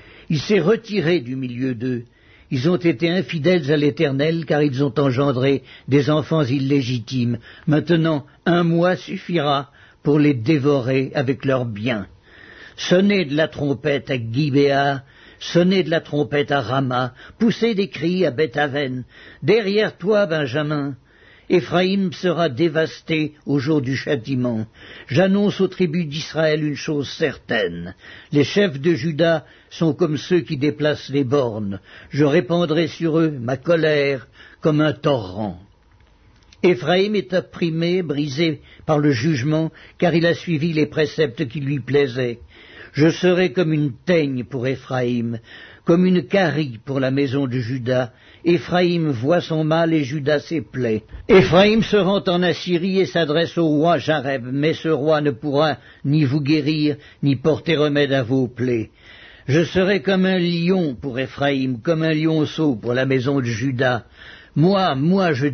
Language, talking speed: French, 150 wpm